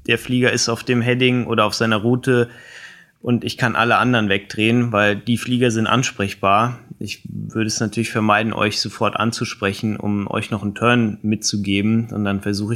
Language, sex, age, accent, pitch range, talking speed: German, male, 20-39, German, 110-125 Hz, 180 wpm